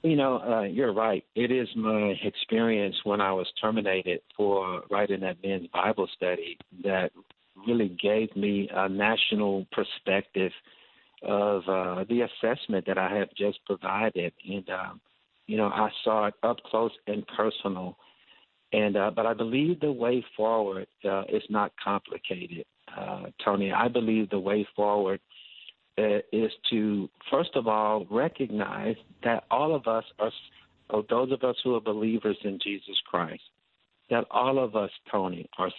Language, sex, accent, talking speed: English, male, American, 155 wpm